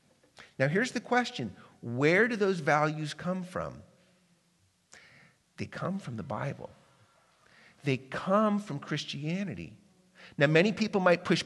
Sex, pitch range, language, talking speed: male, 135-175 Hz, English, 125 wpm